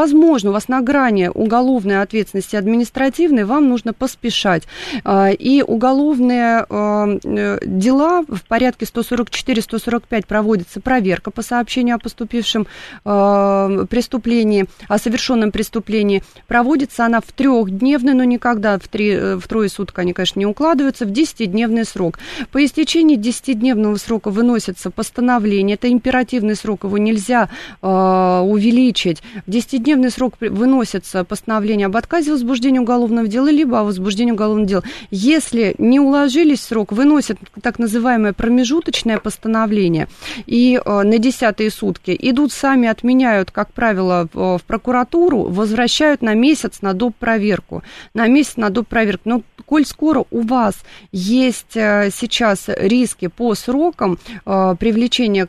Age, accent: 30-49, native